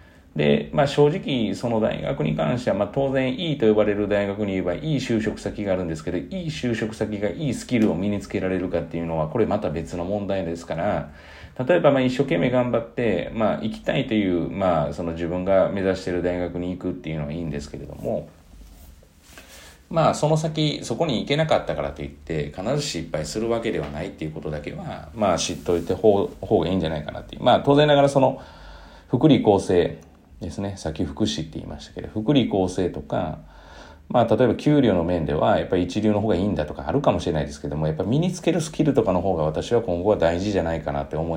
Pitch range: 80-110 Hz